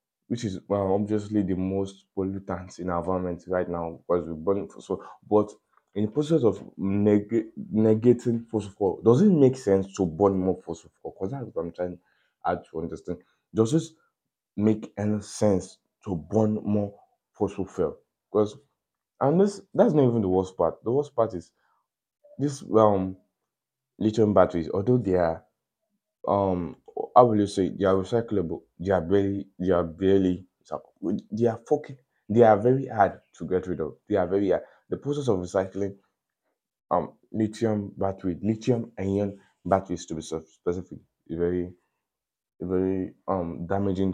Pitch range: 90-110 Hz